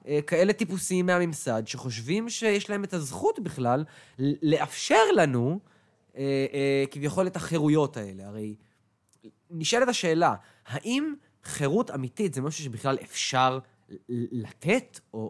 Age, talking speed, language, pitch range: 20-39, 105 wpm, Hebrew, 125-180 Hz